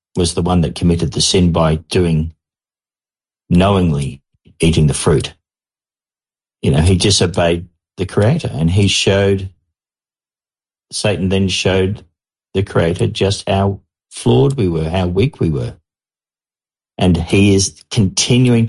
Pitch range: 95-115 Hz